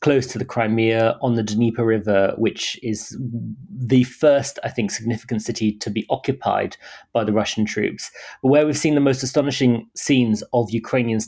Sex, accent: male, British